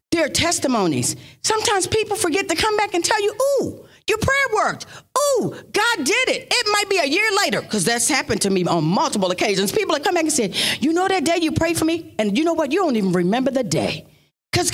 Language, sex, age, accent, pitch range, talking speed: English, female, 40-59, American, 245-375 Hz, 240 wpm